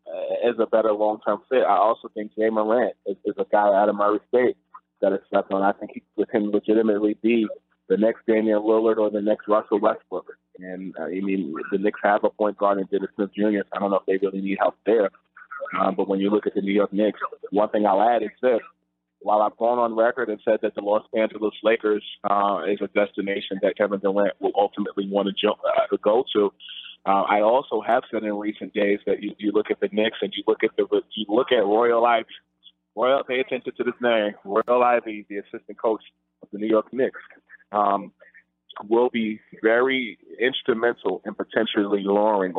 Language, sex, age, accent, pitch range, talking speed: English, male, 20-39, American, 95-110 Hz, 215 wpm